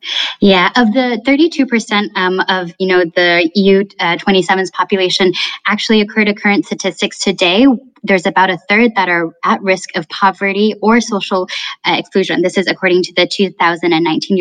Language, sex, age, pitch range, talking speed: English, female, 10-29, 180-205 Hz, 160 wpm